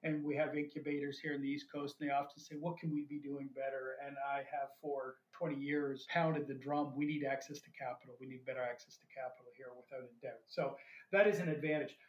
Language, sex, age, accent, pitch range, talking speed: English, male, 40-59, American, 140-175 Hz, 240 wpm